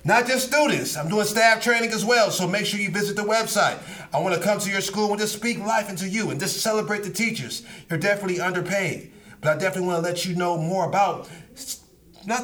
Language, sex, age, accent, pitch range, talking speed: English, male, 30-49, American, 155-200 Hz, 220 wpm